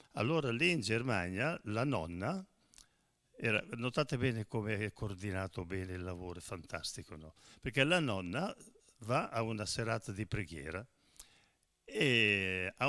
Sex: male